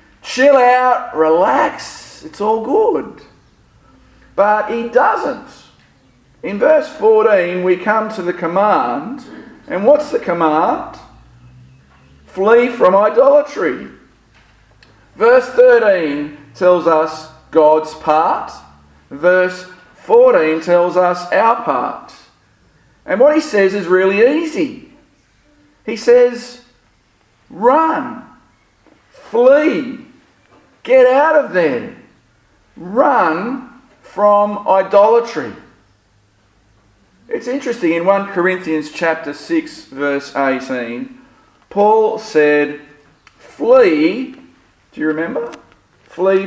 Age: 50-69